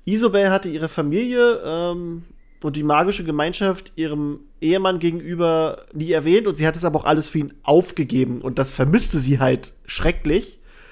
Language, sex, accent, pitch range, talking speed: German, male, German, 140-180 Hz, 165 wpm